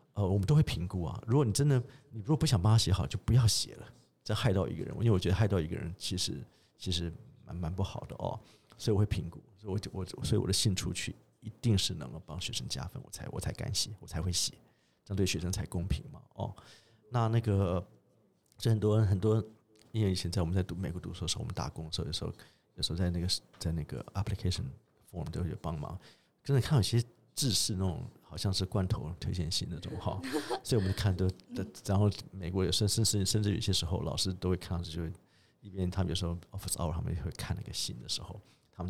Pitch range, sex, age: 90-110 Hz, male, 50-69